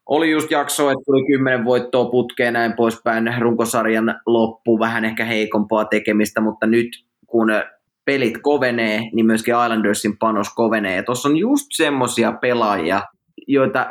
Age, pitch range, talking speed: 20-39, 110-130 Hz, 140 wpm